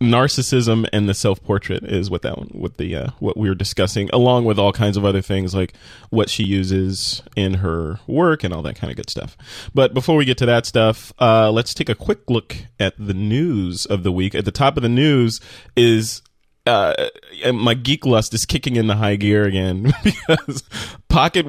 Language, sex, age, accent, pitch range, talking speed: English, male, 20-39, American, 100-120 Hz, 210 wpm